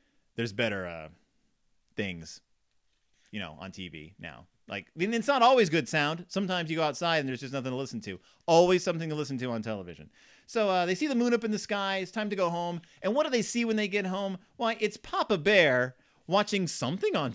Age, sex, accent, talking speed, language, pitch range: 30-49, male, American, 220 wpm, English, 130-205 Hz